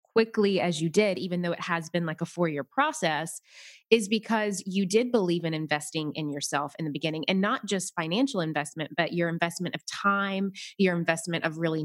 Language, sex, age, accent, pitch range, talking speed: English, female, 20-39, American, 170-210 Hz, 195 wpm